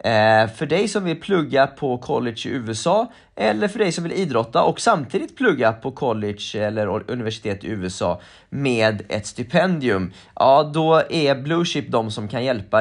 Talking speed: 175 wpm